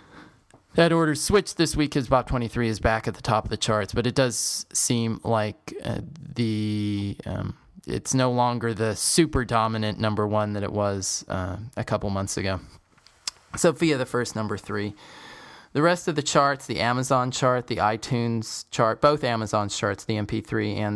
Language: English